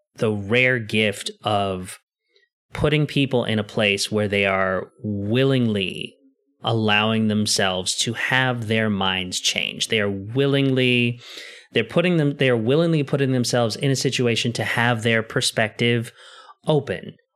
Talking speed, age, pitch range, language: 130 wpm, 30-49, 105-125 Hz, English